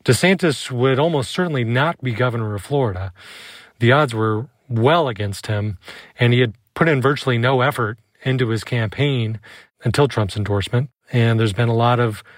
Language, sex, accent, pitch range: English, male, American, 115-135 Hz